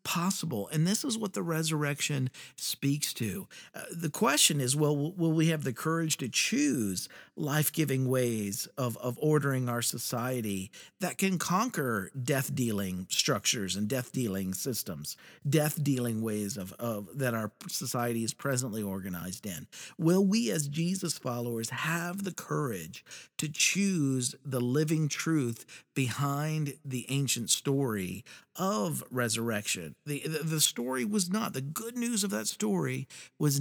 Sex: male